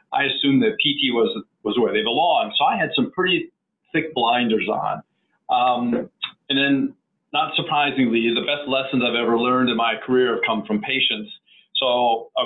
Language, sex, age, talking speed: English, male, 40-59, 180 wpm